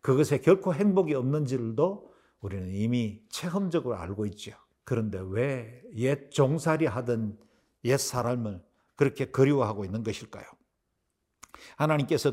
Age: 50-69